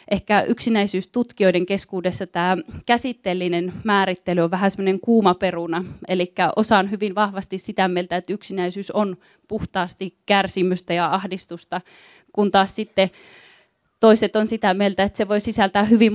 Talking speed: 135 wpm